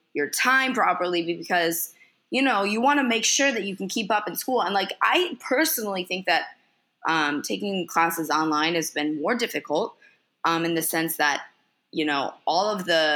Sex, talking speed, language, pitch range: female, 190 wpm, English, 160-235 Hz